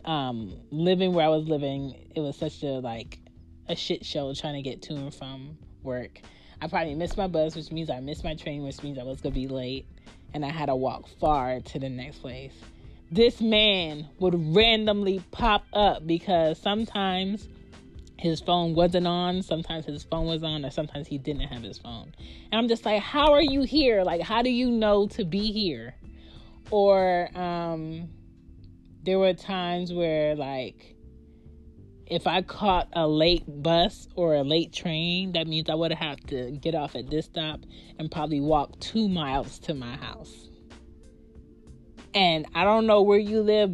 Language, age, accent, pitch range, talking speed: English, 20-39, American, 125-175 Hz, 180 wpm